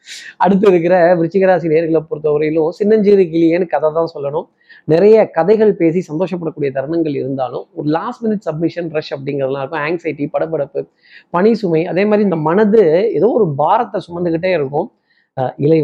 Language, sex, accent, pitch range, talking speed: Tamil, male, native, 145-185 Hz, 150 wpm